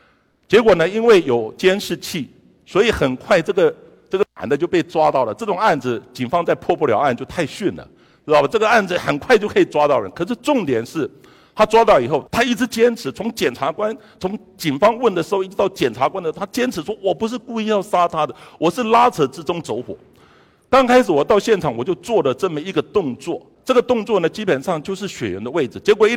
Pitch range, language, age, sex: 150-235 Hz, Chinese, 50-69, male